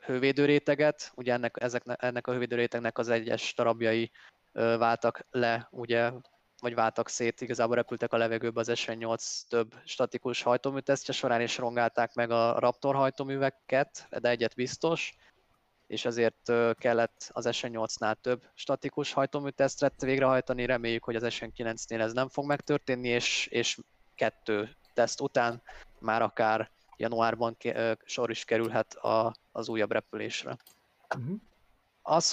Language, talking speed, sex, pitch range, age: Hungarian, 125 wpm, male, 115-135 Hz, 20-39